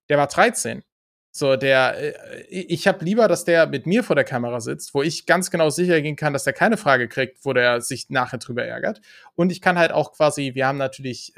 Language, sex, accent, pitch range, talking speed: German, male, German, 130-160 Hz, 225 wpm